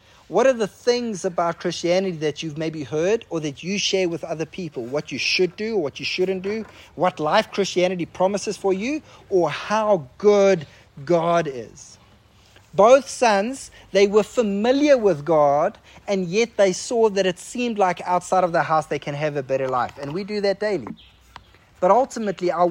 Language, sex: English, male